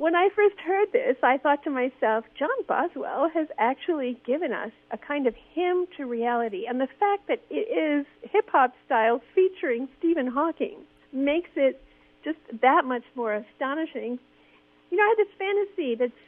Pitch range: 240-315 Hz